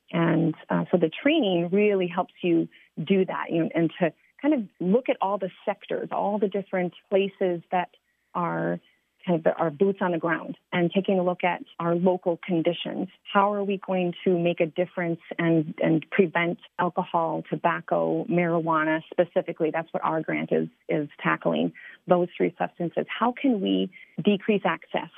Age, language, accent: 30-49, English, American